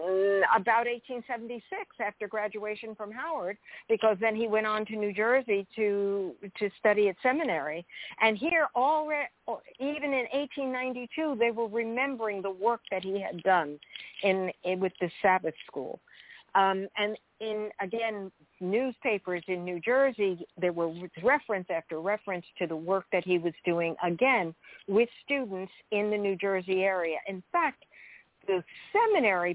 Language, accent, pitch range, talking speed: English, American, 190-245 Hz, 145 wpm